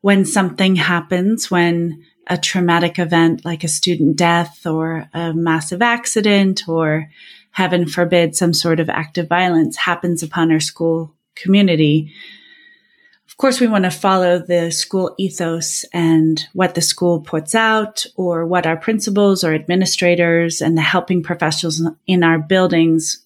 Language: English